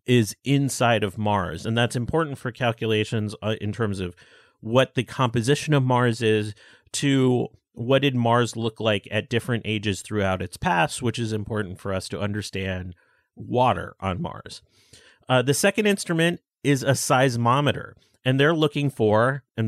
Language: English